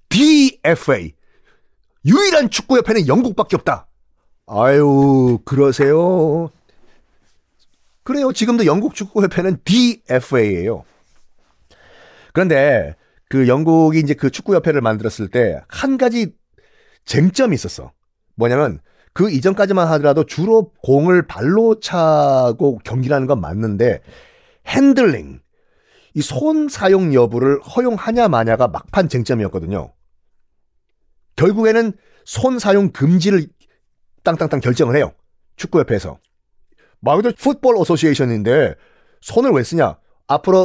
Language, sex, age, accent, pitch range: Korean, male, 40-59, native, 140-225 Hz